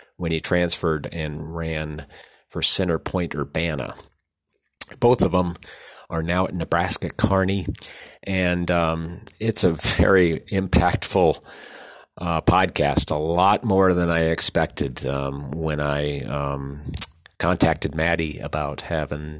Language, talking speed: English, 120 wpm